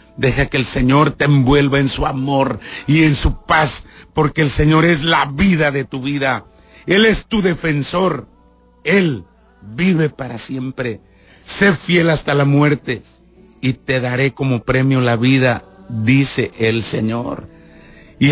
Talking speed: 150 wpm